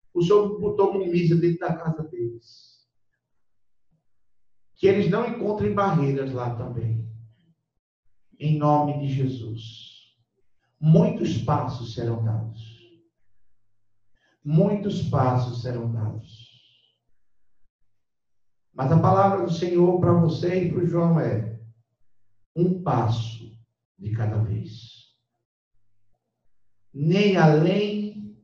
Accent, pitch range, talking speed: Brazilian, 115-170 Hz, 95 wpm